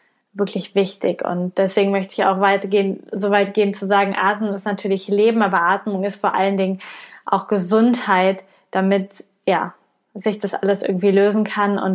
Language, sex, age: German, female, 20-39